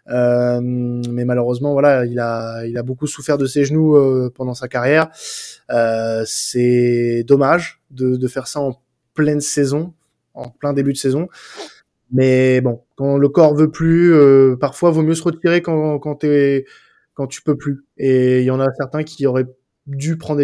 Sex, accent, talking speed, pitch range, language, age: male, French, 185 wpm, 125-145 Hz, French, 20-39